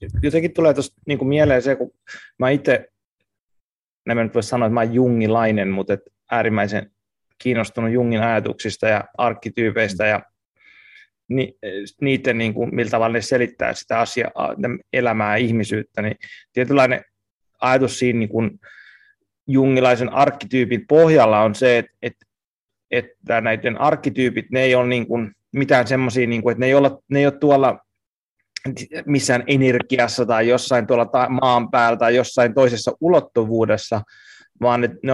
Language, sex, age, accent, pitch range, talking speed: Finnish, male, 30-49, native, 110-130 Hz, 140 wpm